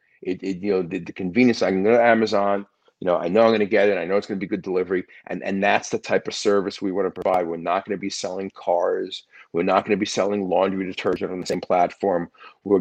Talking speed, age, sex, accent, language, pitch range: 285 wpm, 40-59, male, American, English, 95-110 Hz